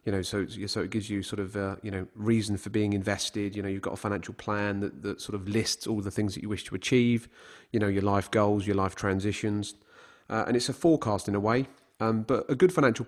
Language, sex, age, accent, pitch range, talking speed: Dutch, male, 30-49, British, 95-110 Hz, 260 wpm